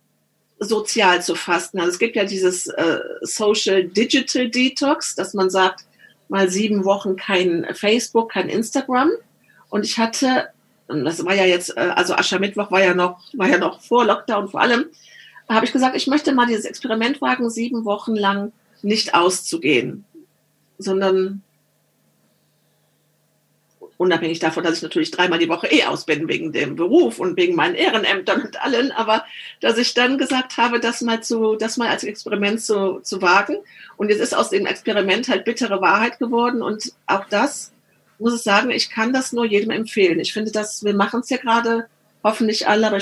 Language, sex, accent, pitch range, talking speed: German, female, German, 195-240 Hz, 175 wpm